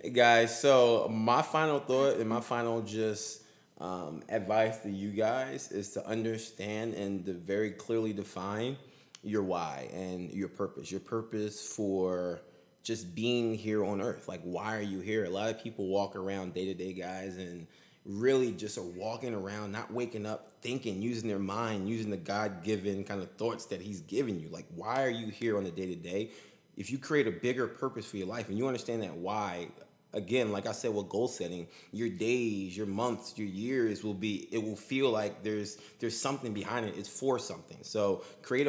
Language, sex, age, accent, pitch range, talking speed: English, male, 20-39, American, 100-115 Hz, 190 wpm